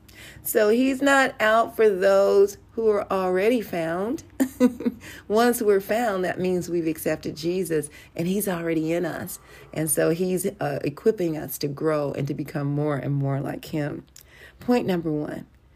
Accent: American